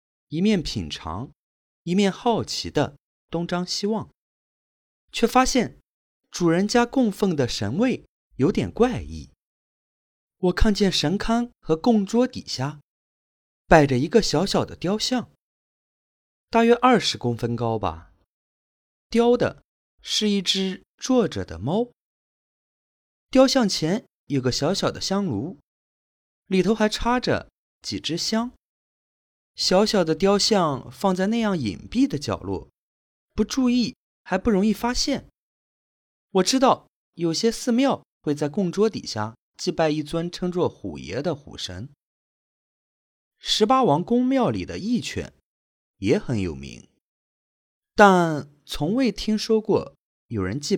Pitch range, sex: 140-225 Hz, male